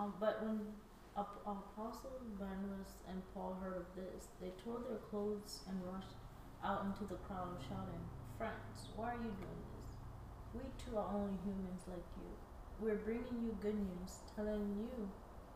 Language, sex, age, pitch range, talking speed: English, female, 20-39, 190-215 Hz, 155 wpm